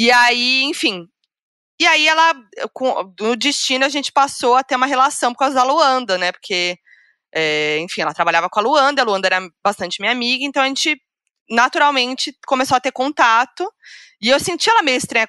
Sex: female